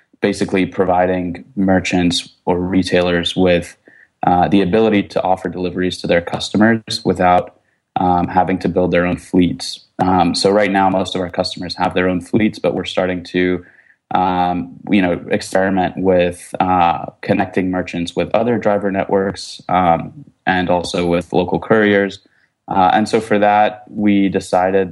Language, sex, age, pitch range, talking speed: English, male, 20-39, 90-95 Hz, 155 wpm